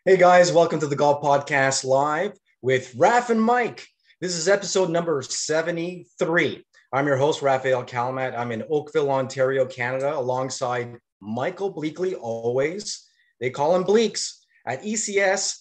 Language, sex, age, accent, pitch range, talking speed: English, male, 30-49, American, 135-190 Hz, 140 wpm